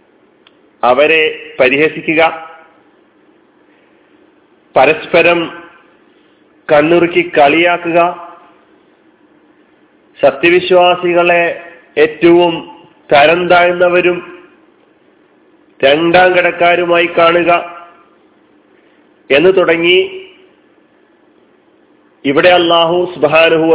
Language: Malayalam